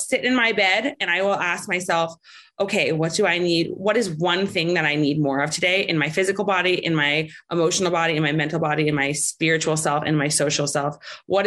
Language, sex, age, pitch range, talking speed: English, female, 20-39, 150-185 Hz, 235 wpm